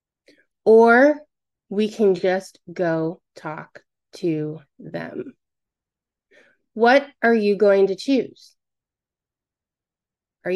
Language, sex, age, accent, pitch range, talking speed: English, female, 30-49, American, 175-225 Hz, 85 wpm